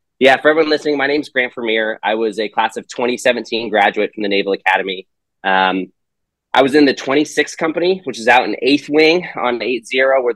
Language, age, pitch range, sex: English, 20-39, 105-140 Hz, male